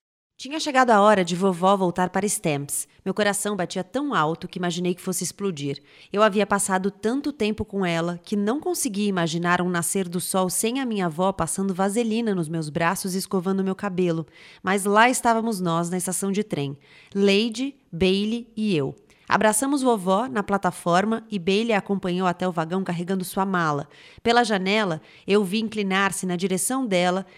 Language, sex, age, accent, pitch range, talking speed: Portuguese, female, 30-49, Brazilian, 180-220 Hz, 180 wpm